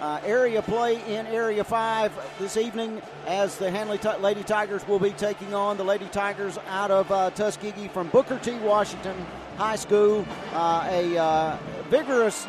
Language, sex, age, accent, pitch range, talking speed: English, male, 50-69, American, 170-205 Hz, 165 wpm